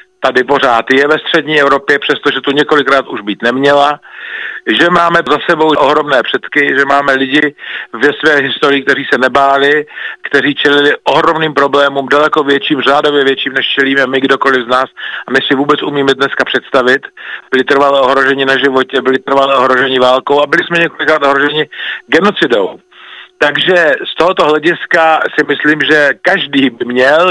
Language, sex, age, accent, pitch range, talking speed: Czech, male, 40-59, native, 135-155 Hz, 160 wpm